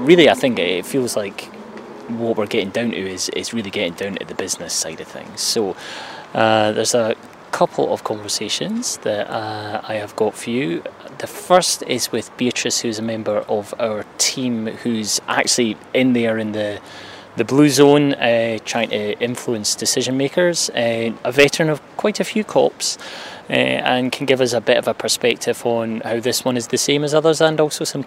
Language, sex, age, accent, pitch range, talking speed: English, male, 20-39, British, 110-145 Hz, 195 wpm